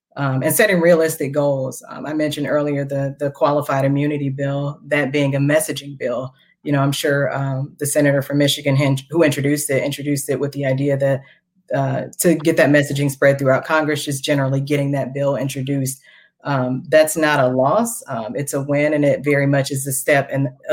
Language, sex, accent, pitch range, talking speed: English, female, American, 140-155 Hz, 200 wpm